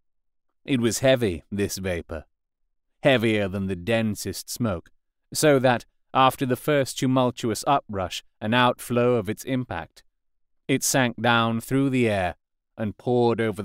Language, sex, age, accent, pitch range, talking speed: English, male, 30-49, British, 95-135 Hz, 135 wpm